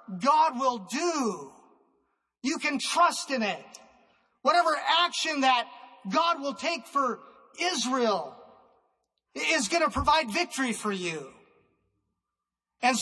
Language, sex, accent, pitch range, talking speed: English, male, American, 235-325 Hz, 110 wpm